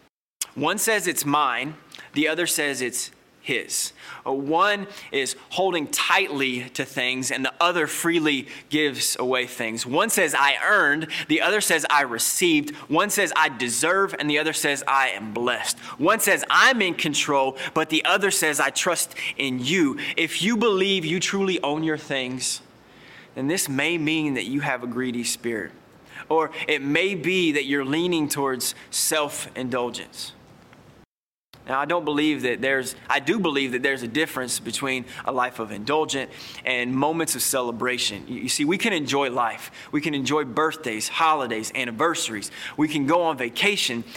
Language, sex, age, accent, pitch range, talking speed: English, male, 20-39, American, 125-160 Hz, 165 wpm